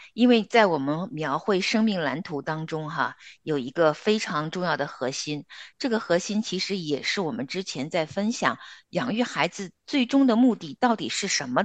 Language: Chinese